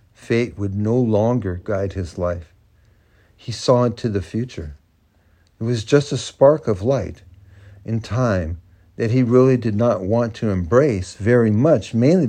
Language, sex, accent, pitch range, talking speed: English, male, American, 95-125 Hz, 155 wpm